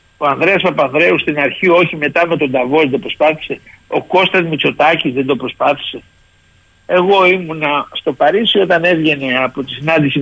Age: 60-79